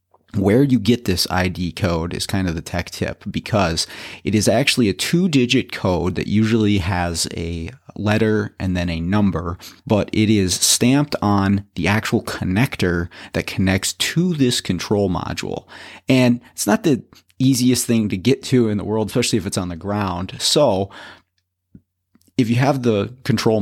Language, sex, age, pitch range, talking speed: English, male, 30-49, 90-110 Hz, 170 wpm